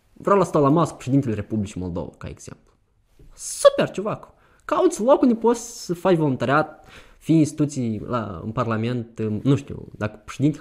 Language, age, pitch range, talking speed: Romanian, 20-39, 100-140 Hz, 160 wpm